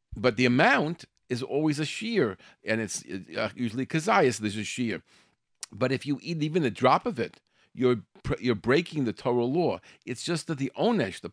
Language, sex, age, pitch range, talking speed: English, male, 50-69, 115-150 Hz, 195 wpm